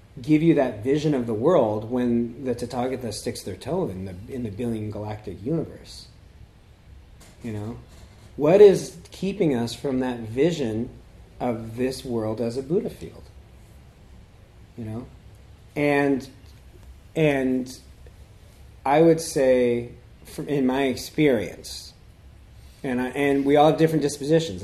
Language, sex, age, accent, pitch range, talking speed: English, male, 40-59, American, 120-180 Hz, 135 wpm